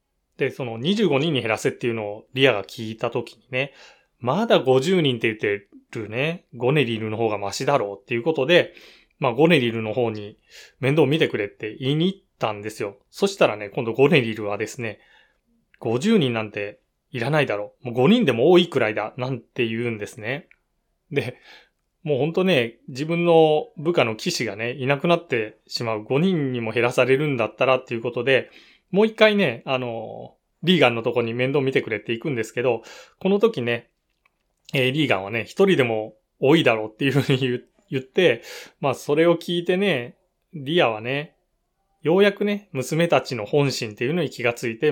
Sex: male